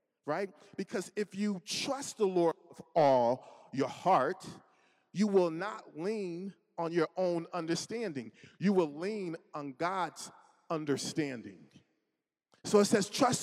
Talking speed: 130 wpm